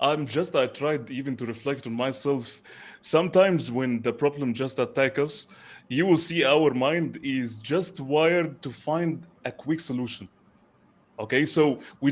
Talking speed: 160 wpm